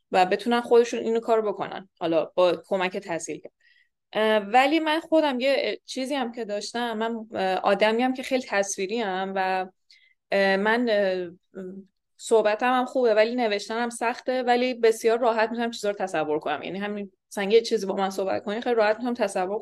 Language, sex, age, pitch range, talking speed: Persian, female, 20-39, 195-245 Hz, 165 wpm